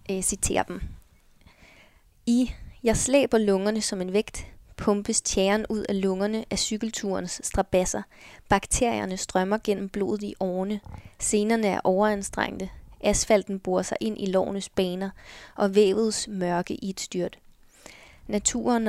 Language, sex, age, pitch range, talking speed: Danish, female, 20-39, 185-215 Hz, 125 wpm